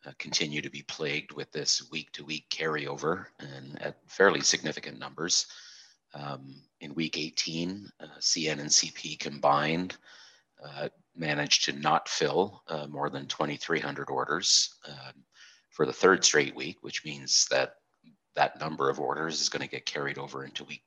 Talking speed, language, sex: 150 wpm, English, male